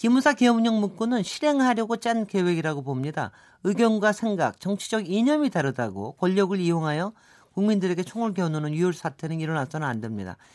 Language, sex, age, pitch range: Korean, male, 40-59, 150-210 Hz